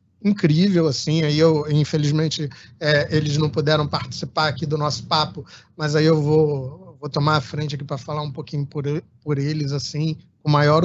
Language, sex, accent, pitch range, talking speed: Portuguese, male, Brazilian, 150-185 Hz, 175 wpm